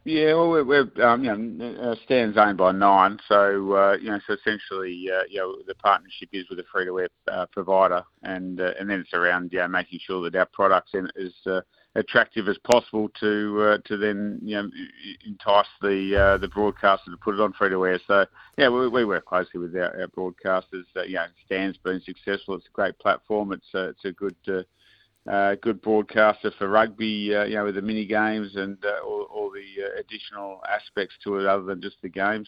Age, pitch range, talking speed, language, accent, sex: 50-69, 100-110 Hz, 220 wpm, English, Australian, male